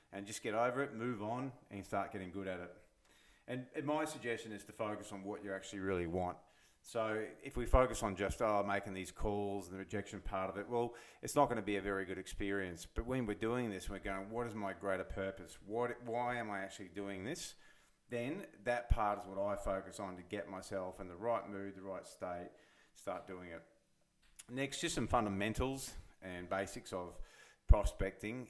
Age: 40-59